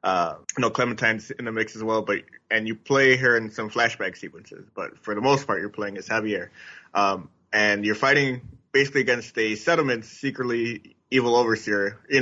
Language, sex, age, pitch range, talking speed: English, male, 20-39, 100-130 Hz, 185 wpm